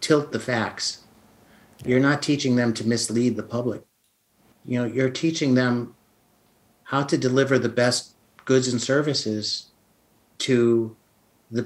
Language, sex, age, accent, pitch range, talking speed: Indonesian, male, 50-69, American, 110-130 Hz, 135 wpm